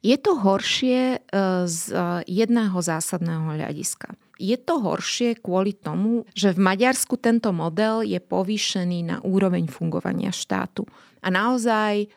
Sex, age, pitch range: female, 30-49, 180-225 Hz